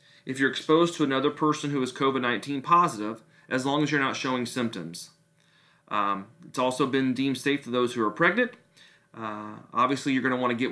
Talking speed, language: 200 wpm, English